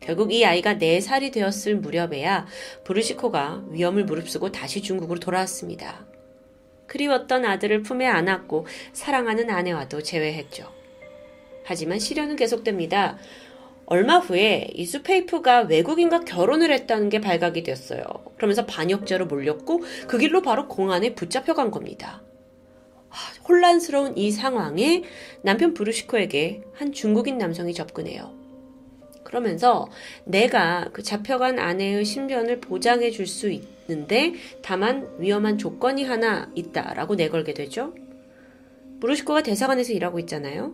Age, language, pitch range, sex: 30-49, Korean, 180-265 Hz, female